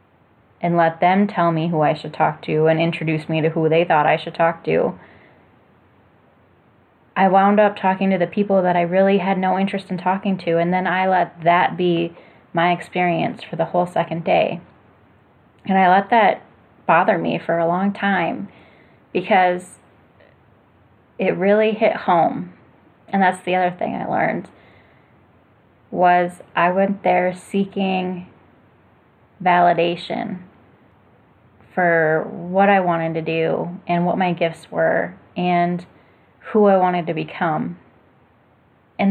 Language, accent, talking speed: English, American, 145 wpm